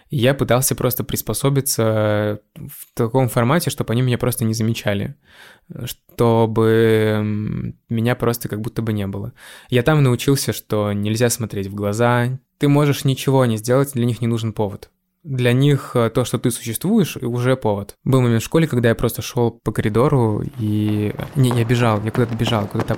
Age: 20-39